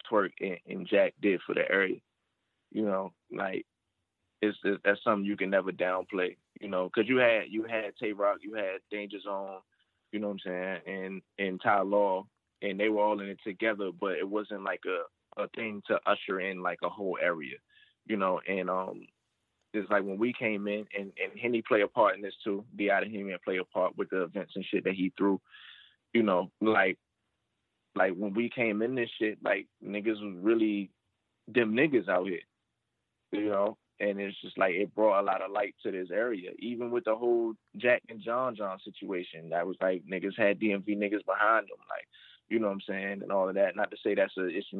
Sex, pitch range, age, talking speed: male, 95-110 Hz, 20-39, 220 wpm